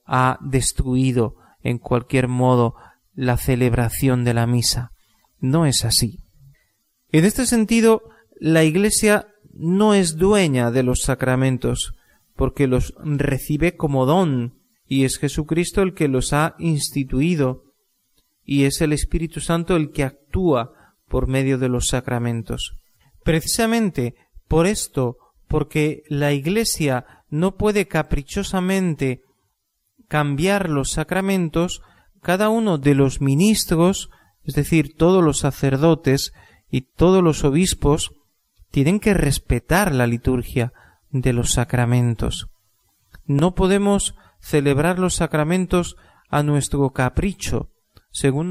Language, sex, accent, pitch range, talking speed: Spanish, male, Spanish, 130-175 Hz, 115 wpm